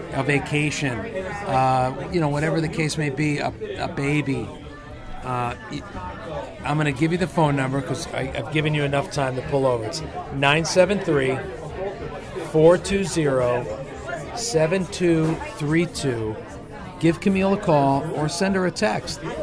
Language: English